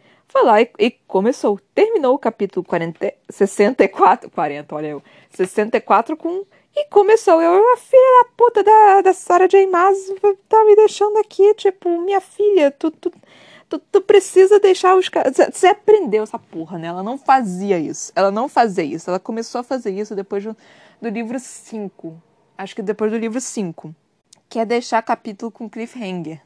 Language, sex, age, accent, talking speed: Portuguese, female, 20-39, Brazilian, 175 wpm